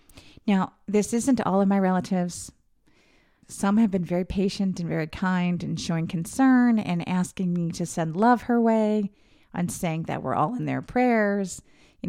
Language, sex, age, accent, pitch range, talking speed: English, female, 30-49, American, 175-235 Hz, 175 wpm